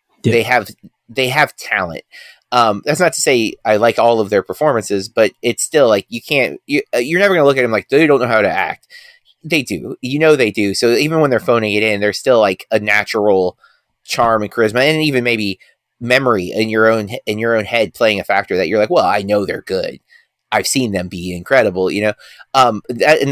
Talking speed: 225 wpm